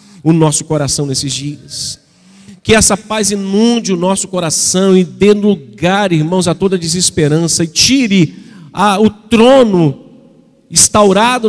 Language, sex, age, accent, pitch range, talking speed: Portuguese, male, 50-69, Brazilian, 150-175 Hz, 130 wpm